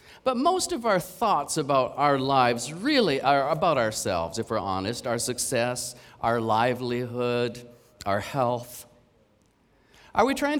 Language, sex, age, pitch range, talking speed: English, male, 40-59, 105-160 Hz, 135 wpm